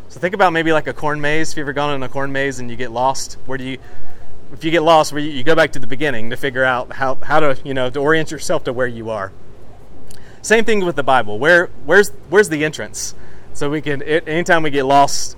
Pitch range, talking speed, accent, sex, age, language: 120-150 Hz, 260 wpm, American, male, 30-49, English